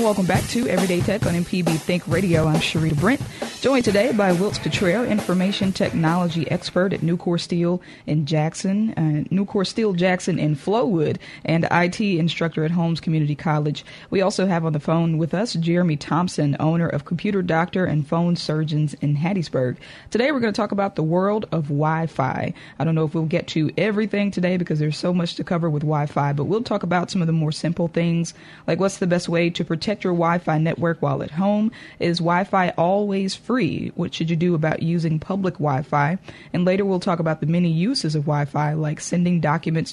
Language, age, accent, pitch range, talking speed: English, 20-39, American, 155-185 Hz, 200 wpm